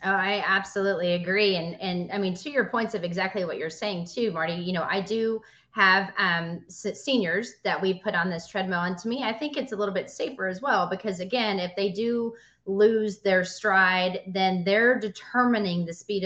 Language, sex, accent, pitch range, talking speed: English, female, American, 180-210 Hz, 210 wpm